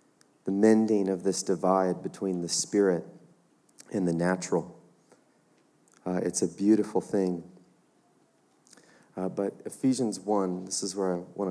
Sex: male